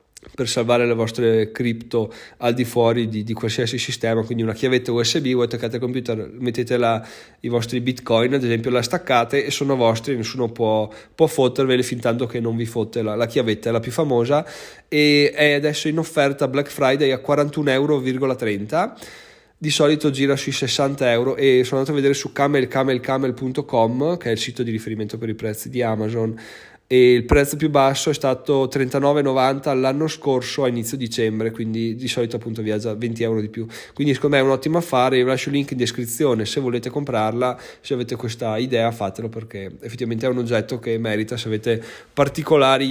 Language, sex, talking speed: Italian, male, 190 wpm